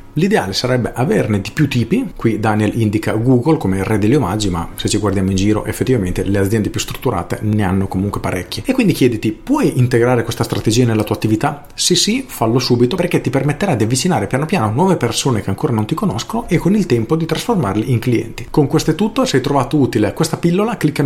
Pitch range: 110-155 Hz